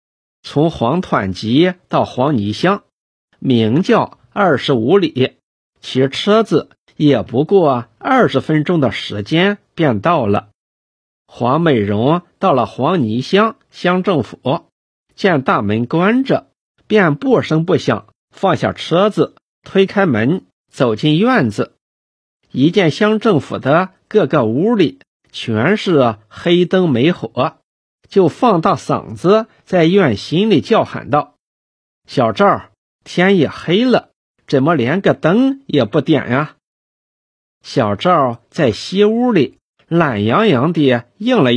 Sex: male